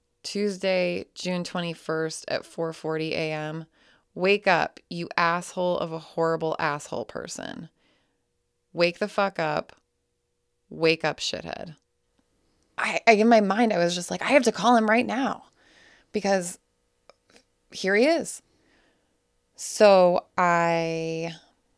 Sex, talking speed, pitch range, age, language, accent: female, 120 wpm, 150-185 Hz, 20-39, English, American